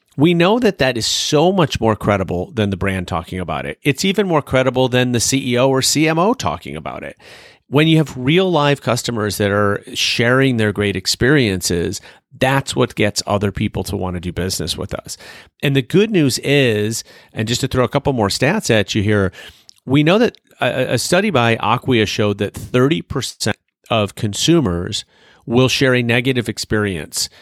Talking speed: 185 wpm